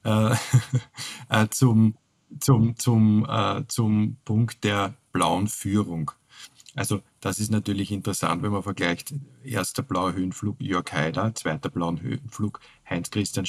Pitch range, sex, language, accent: 100-125 Hz, male, German, Austrian